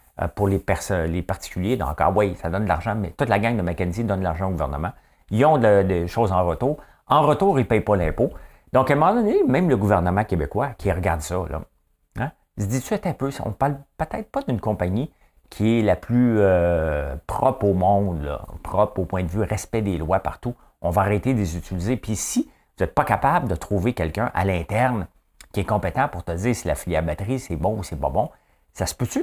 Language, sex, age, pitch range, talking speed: English, male, 50-69, 85-125 Hz, 240 wpm